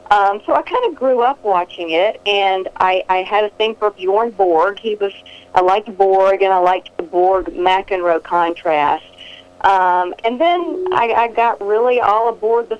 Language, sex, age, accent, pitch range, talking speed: English, female, 50-69, American, 180-235 Hz, 190 wpm